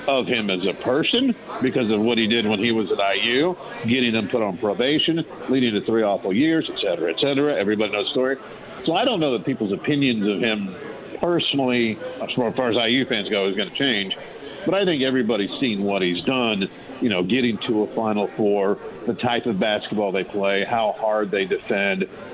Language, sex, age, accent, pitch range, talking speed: English, male, 50-69, American, 110-155 Hz, 210 wpm